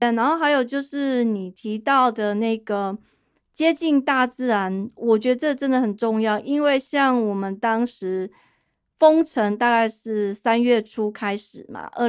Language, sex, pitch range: Chinese, female, 205-255 Hz